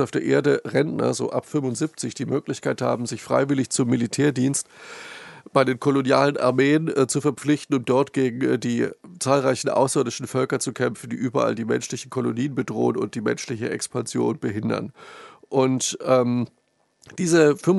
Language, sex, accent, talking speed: German, male, German, 150 wpm